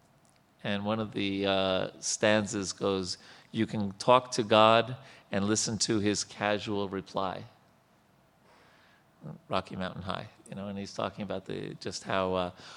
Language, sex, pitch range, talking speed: English, male, 100-135 Hz, 145 wpm